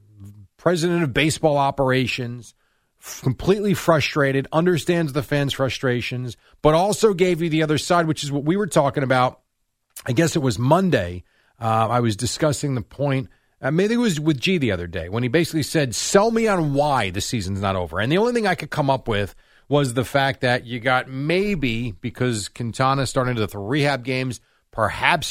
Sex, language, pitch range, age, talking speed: male, English, 115-165 Hz, 40-59, 190 wpm